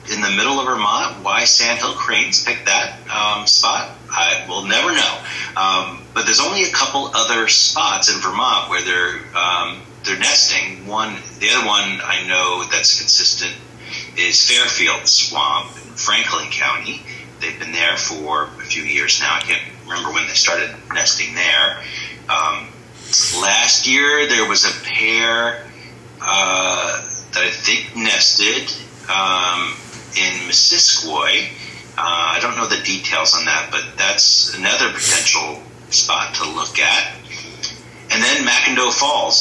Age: 30-49